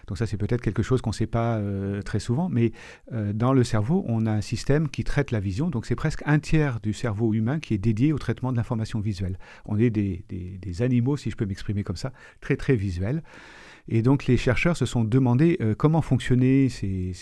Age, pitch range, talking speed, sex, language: 40-59, 110-130 Hz, 235 wpm, male, French